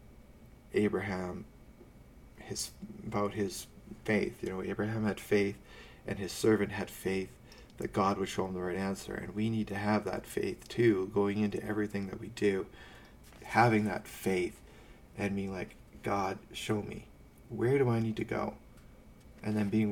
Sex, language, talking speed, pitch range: male, English, 165 wpm, 95-110 Hz